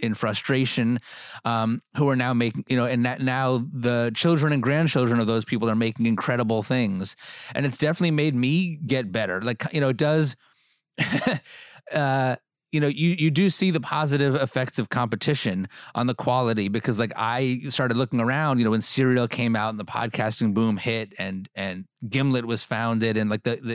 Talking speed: 190 wpm